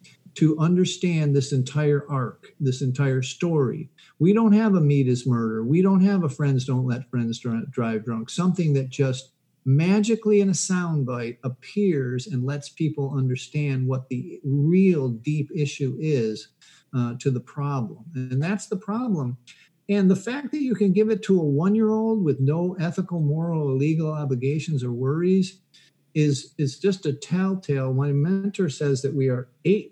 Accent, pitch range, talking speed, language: American, 130-175 Hz, 165 wpm, English